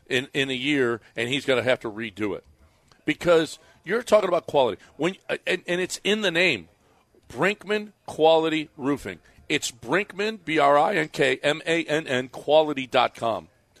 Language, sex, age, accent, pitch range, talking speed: English, male, 50-69, American, 145-185 Hz, 135 wpm